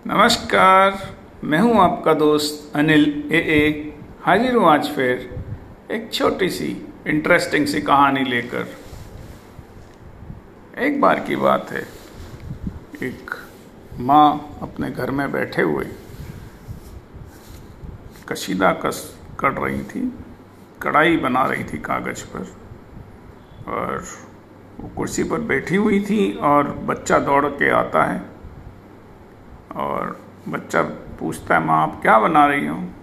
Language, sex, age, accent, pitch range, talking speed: Hindi, male, 50-69, native, 90-150 Hz, 115 wpm